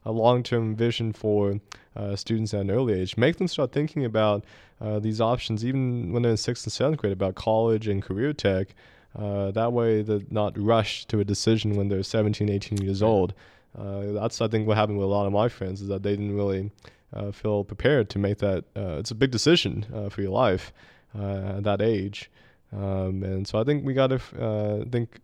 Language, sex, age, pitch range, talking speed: English, male, 20-39, 100-115 Hz, 215 wpm